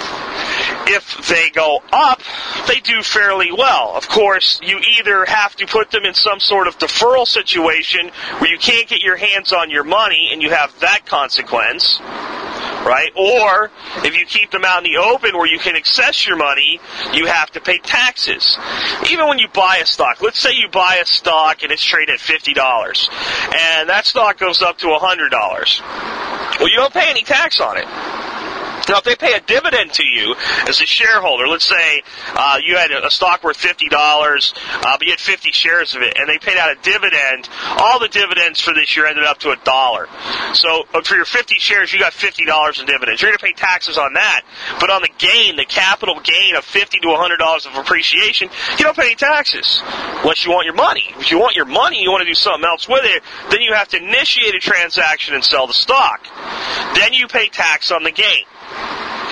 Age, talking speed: 40-59, 205 wpm